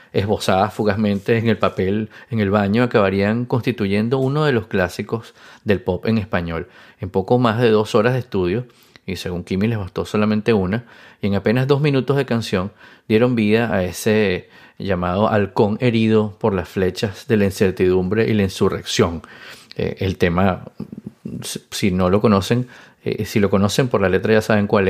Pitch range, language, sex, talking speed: 95-115 Hz, Spanish, male, 170 wpm